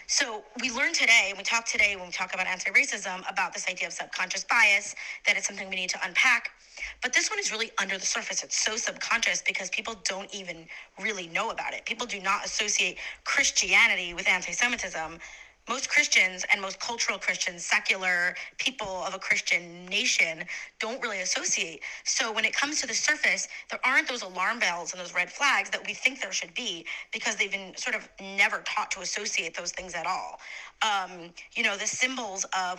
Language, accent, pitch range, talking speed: English, American, 185-230 Hz, 200 wpm